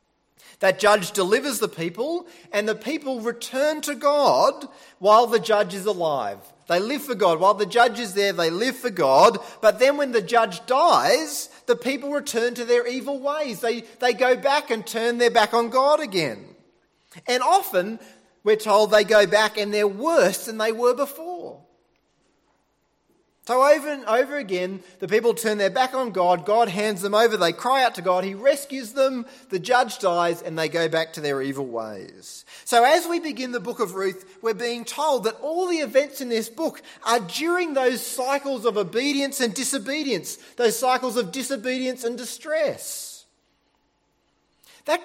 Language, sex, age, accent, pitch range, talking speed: English, male, 30-49, Australian, 205-270 Hz, 180 wpm